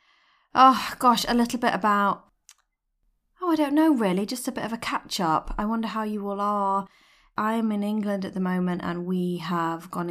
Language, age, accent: English, 30-49, British